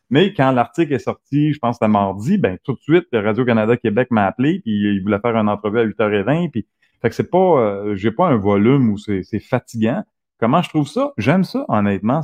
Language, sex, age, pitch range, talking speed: French, male, 30-49, 105-135 Hz, 225 wpm